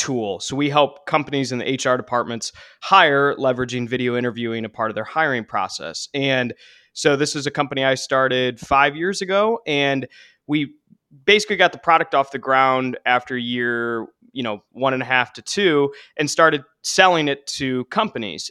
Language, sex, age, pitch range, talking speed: English, male, 20-39, 130-170 Hz, 180 wpm